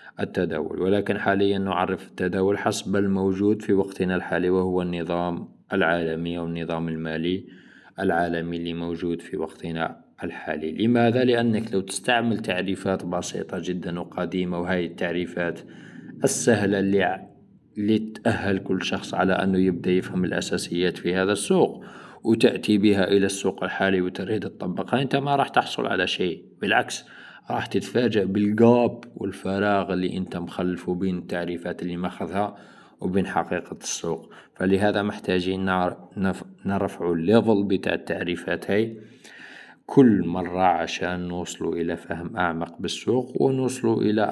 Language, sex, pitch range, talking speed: Arabic, male, 85-105 Hz, 125 wpm